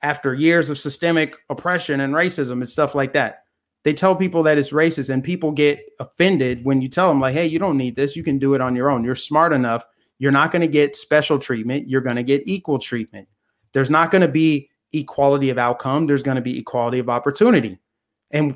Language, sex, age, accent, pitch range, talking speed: English, male, 30-49, American, 135-160 Hz, 225 wpm